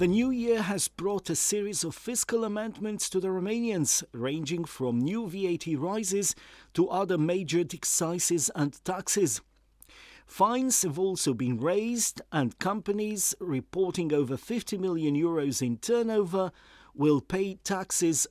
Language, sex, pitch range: English, male, 155-205 Hz